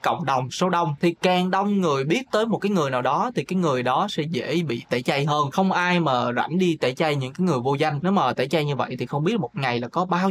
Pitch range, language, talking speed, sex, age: 140-190 Hz, Vietnamese, 295 wpm, male, 20-39